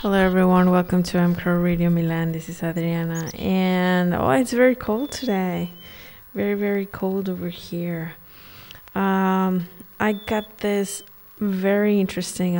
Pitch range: 175-195 Hz